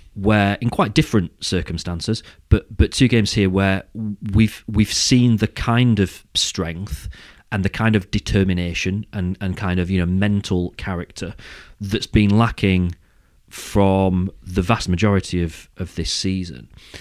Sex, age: male, 30-49